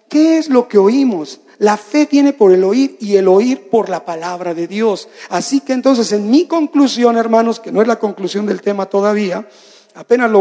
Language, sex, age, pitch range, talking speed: Spanish, male, 50-69, 185-260 Hz, 210 wpm